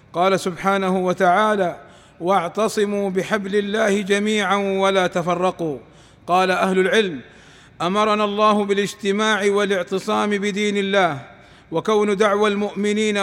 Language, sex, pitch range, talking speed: Arabic, male, 190-215 Hz, 95 wpm